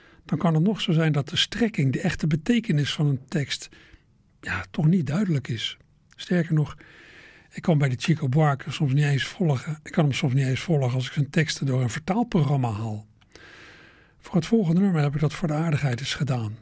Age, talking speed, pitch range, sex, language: 60-79, 215 wpm, 130-165 Hz, male, Dutch